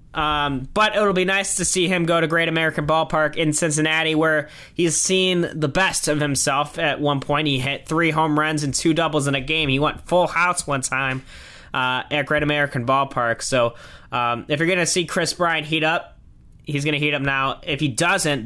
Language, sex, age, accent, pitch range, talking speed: English, male, 20-39, American, 135-165 Hz, 220 wpm